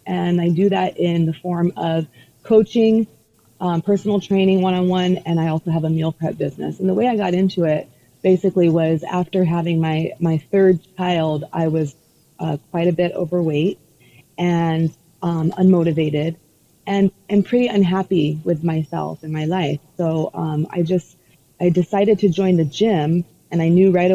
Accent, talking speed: American, 170 wpm